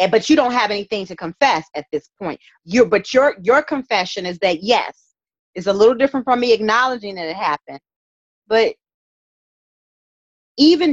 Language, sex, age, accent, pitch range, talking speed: English, female, 30-49, American, 190-275 Hz, 165 wpm